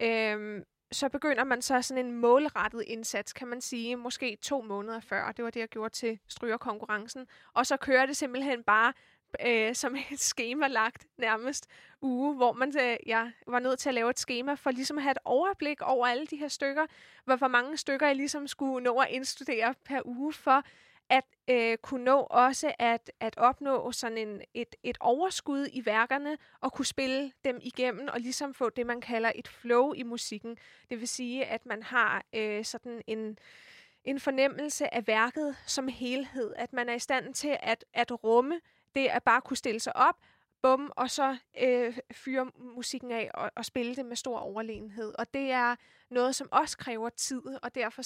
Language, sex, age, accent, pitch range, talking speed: Danish, female, 20-39, native, 235-270 Hz, 185 wpm